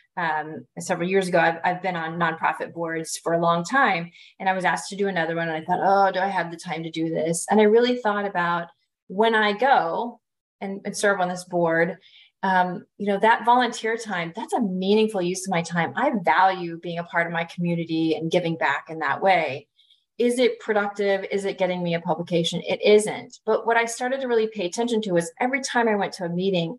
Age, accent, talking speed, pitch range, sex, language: 30-49, American, 230 wpm, 175-225 Hz, female, English